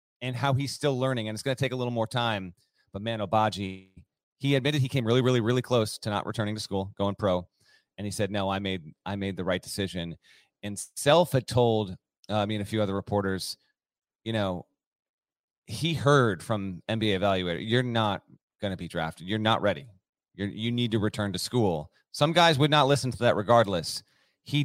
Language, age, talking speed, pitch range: English, 30-49, 210 wpm, 105-135 Hz